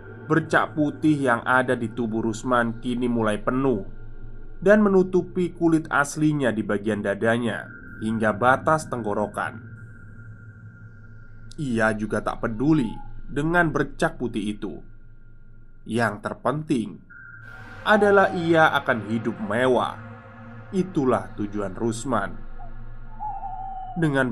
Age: 20-39